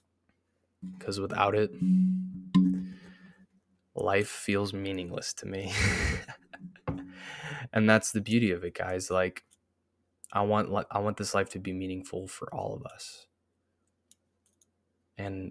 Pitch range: 95-110 Hz